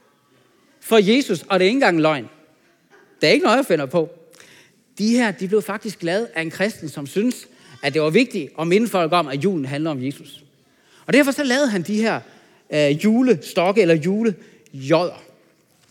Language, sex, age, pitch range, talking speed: Danish, male, 40-59, 165-245 Hz, 190 wpm